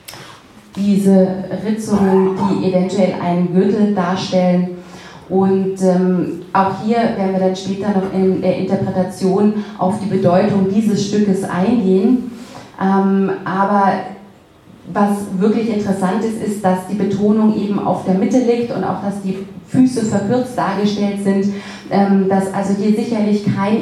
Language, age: German, 30-49